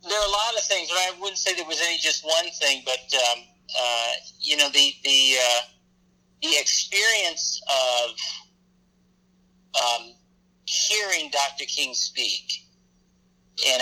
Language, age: English, 50-69